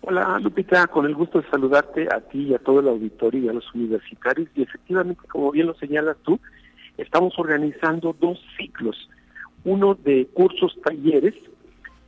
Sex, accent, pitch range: male, Mexican, 125-175 Hz